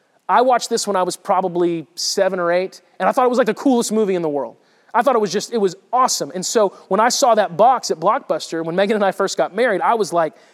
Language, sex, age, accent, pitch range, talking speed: English, male, 30-49, American, 180-235 Hz, 280 wpm